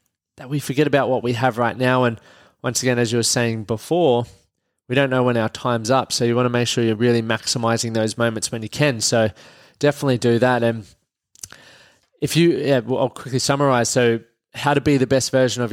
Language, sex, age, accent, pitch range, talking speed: English, male, 20-39, Australian, 115-140 Hz, 220 wpm